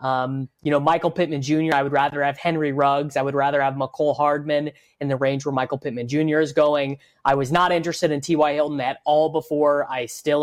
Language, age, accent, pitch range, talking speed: English, 20-39, American, 145-170 Hz, 225 wpm